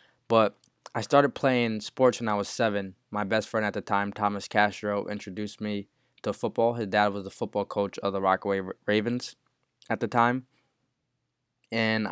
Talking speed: 175 wpm